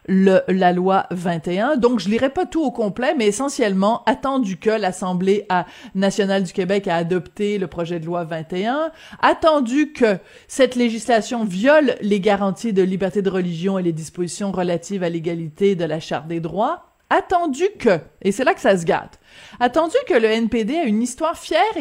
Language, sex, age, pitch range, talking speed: French, female, 30-49, 190-255 Hz, 180 wpm